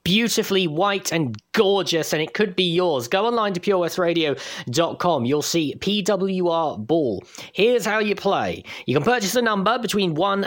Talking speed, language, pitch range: 160 wpm, English, 150-200 Hz